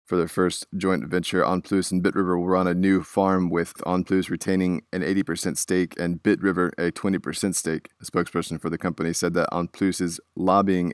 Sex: male